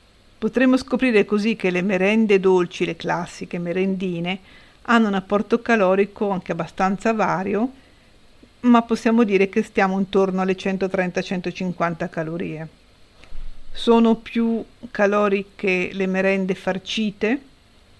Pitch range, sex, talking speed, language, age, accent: 180-210 Hz, female, 105 wpm, Italian, 50-69, native